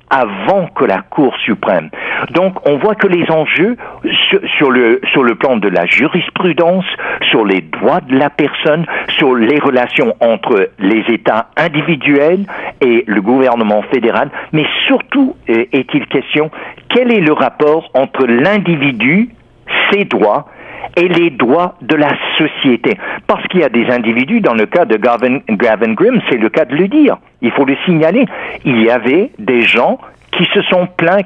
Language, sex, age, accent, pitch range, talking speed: French, male, 60-79, French, 140-205 Hz, 165 wpm